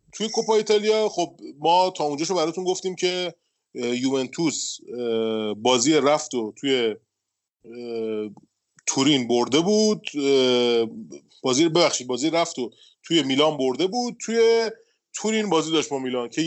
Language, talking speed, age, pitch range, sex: Persian, 115 wpm, 30-49, 125-170 Hz, male